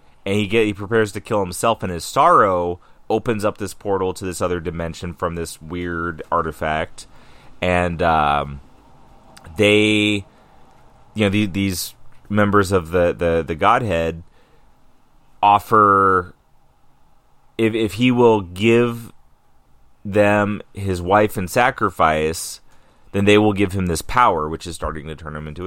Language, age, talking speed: English, 30-49, 145 wpm